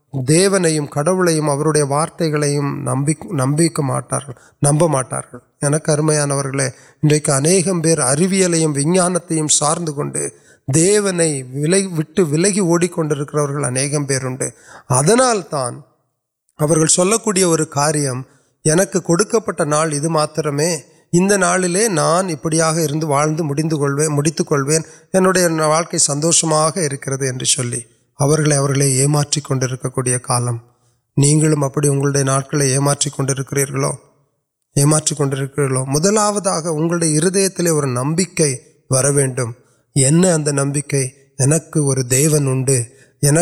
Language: Urdu